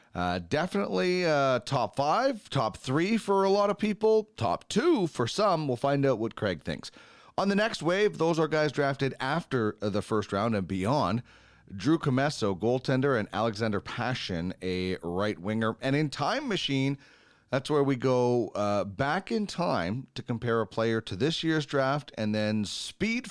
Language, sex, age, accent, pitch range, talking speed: English, male, 30-49, American, 105-155 Hz, 175 wpm